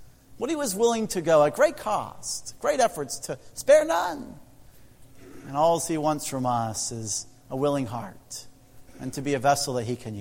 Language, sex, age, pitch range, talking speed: English, male, 40-59, 120-135 Hz, 190 wpm